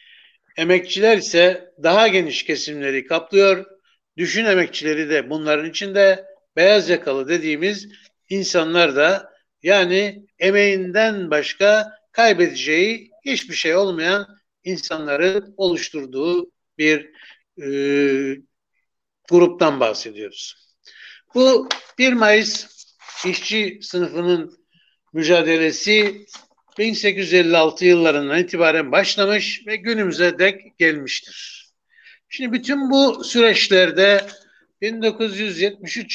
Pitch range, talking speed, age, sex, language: 165-210 Hz, 80 wpm, 60-79, male, Turkish